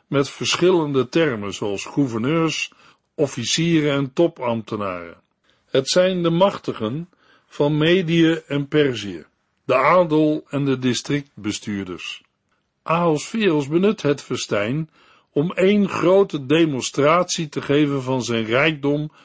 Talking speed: 110 wpm